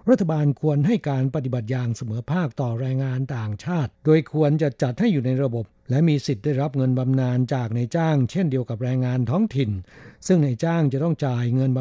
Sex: male